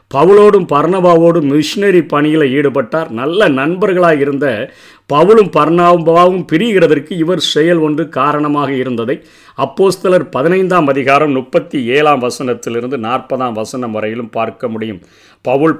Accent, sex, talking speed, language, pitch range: native, male, 105 wpm, Tamil, 135-175 Hz